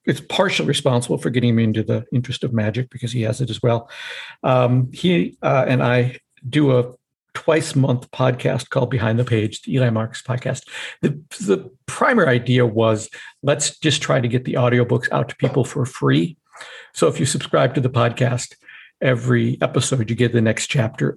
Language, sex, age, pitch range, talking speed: English, male, 60-79, 120-135 Hz, 185 wpm